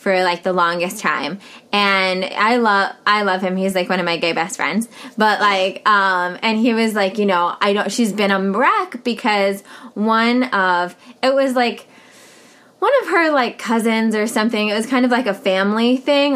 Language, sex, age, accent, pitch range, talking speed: English, female, 20-39, American, 190-250 Hz, 200 wpm